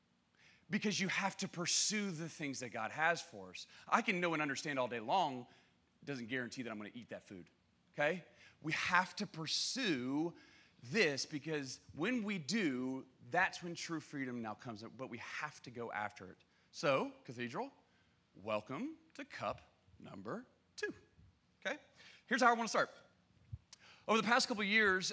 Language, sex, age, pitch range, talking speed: English, male, 30-49, 130-215 Hz, 170 wpm